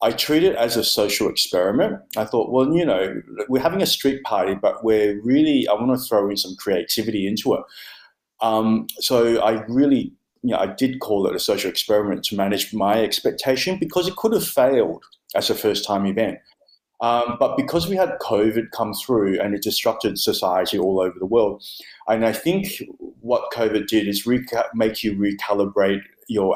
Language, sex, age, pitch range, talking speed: English, male, 30-49, 105-135 Hz, 190 wpm